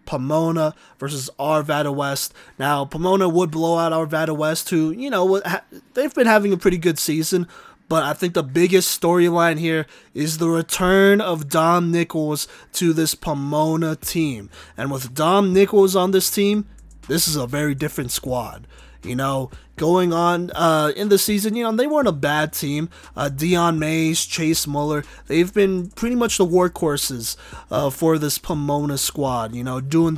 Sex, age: male, 30-49